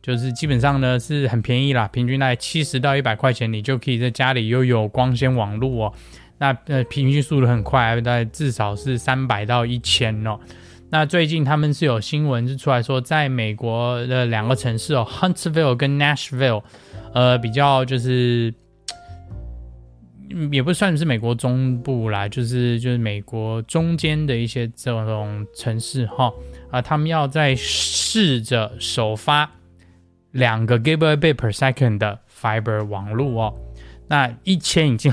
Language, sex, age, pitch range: Chinese, male, 20-39, 110-135 Hz